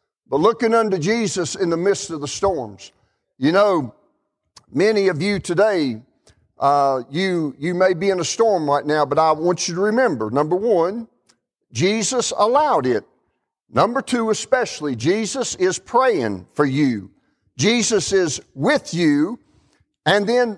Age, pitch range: 50-69, 160-235 Hz